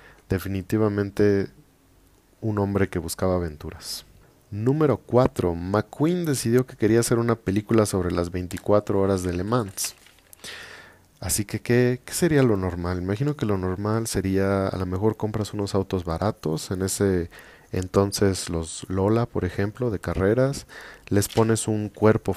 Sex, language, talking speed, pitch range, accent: male, Spanish, 140 wpm, 95-110 Hz, Mexican